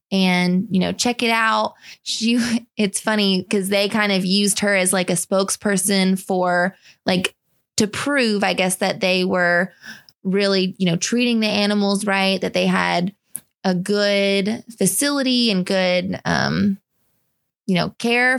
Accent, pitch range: American, 185-225 Hz